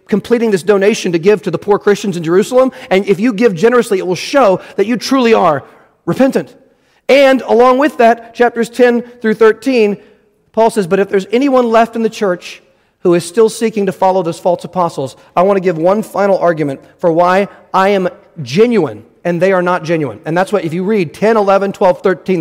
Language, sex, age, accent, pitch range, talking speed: English, male, 40-59, American, 175-220 Hz, 210 wpm